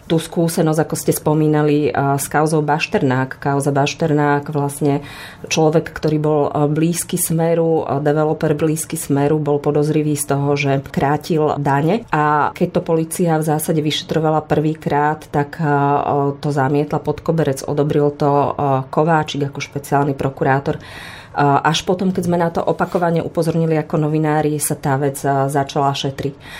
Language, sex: Slovak, female